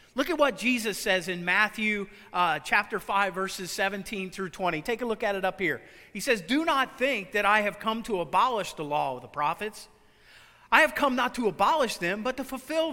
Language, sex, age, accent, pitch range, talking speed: English, male, 40-59, American, 180-250 Hz, 220 wpm